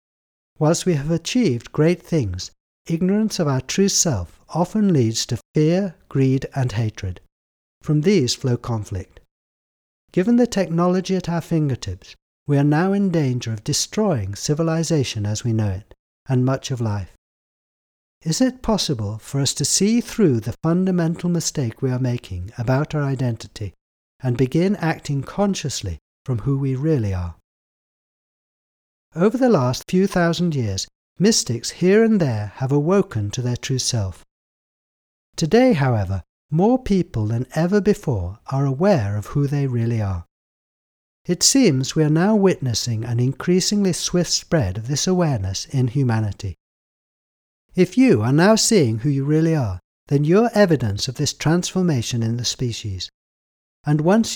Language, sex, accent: English, male, British